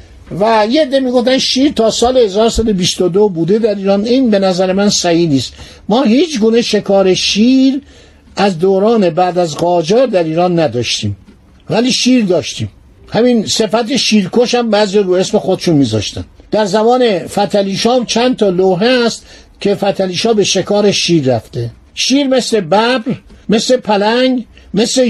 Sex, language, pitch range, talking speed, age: male, Persian, 180-235 Hz, 150 wpm, 50-69